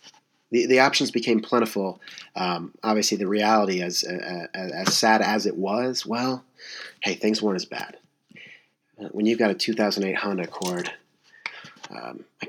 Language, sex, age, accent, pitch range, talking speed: English, male, 30-49, American, 95-115 Hz, 150 wpm